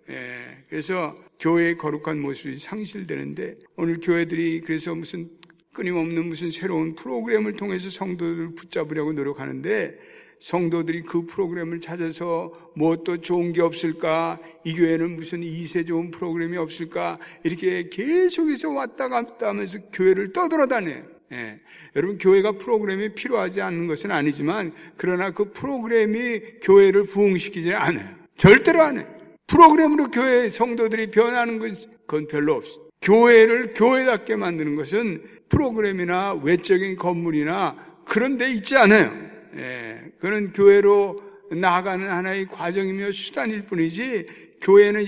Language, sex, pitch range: Korean, male, 170-220 Hz